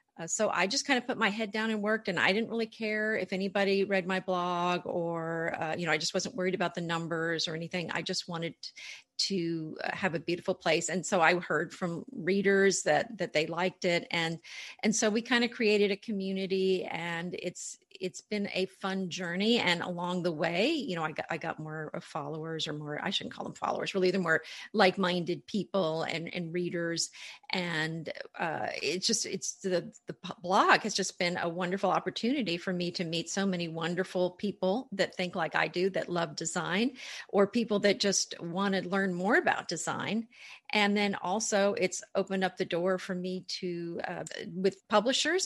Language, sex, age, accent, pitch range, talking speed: English, female, 40-59, American, 170-205 Hz, 200 wpm